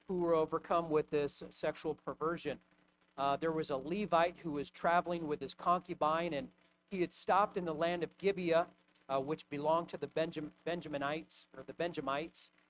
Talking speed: 175 wpm